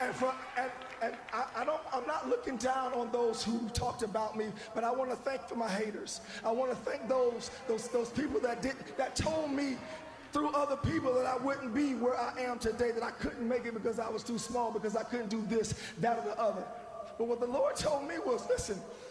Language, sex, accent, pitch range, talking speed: English, male, American, 230-270 Hz, 240 wpm